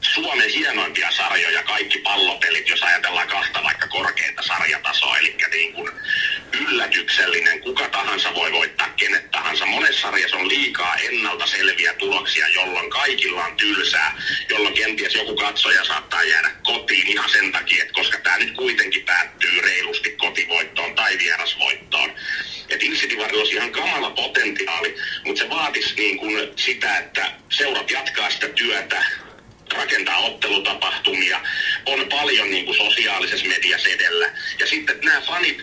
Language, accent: Finnish, native